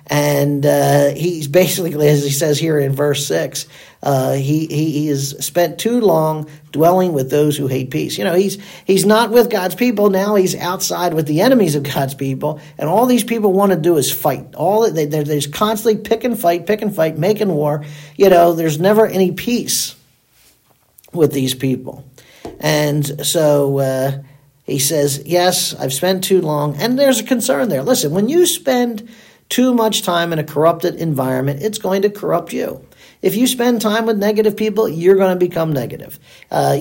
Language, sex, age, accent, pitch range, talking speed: English, male, 50-69, American, 150-215 Hz, 185 wpm